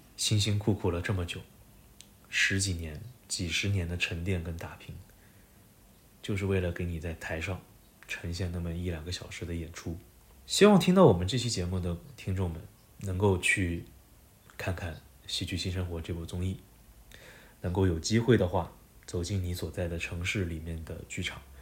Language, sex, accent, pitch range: Chinese, male, native, 85-110 Hz